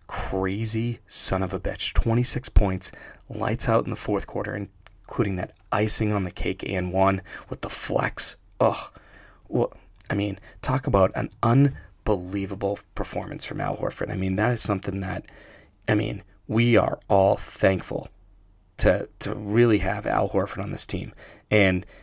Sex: male